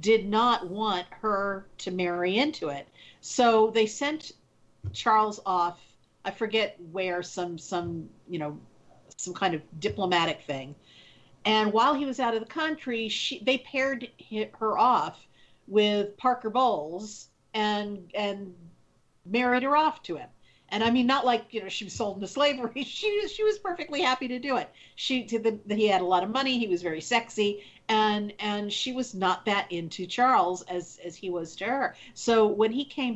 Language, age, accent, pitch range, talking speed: English, 50-69, American, 180-230 Hz, 180 wpm